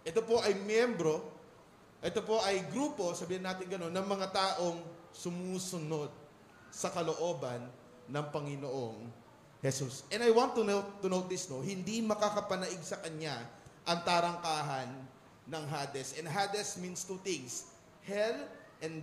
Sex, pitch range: male, 155-210 Hz